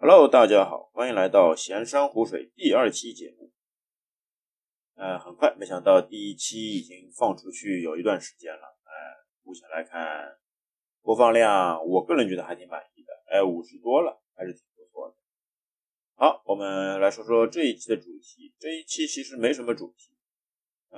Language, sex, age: Chinese, male, 20-39